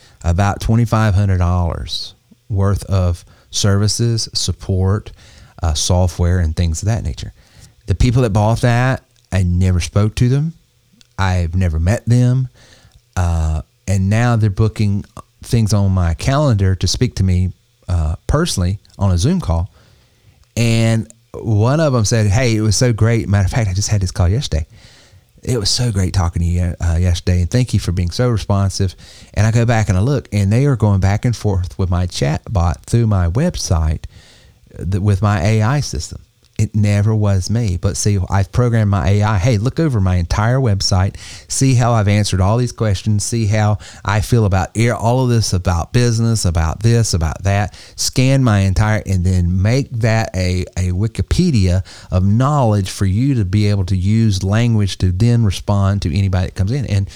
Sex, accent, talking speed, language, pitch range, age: male, American, 185 wpm, English, 95-115 Hz, 30-49